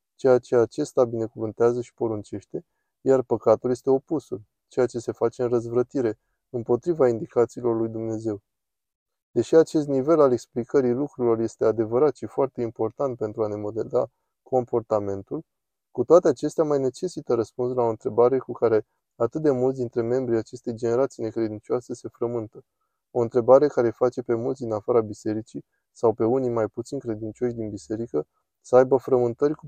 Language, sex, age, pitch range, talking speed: Romanian, male, 20-39, 115-130 Hz, 160 wpm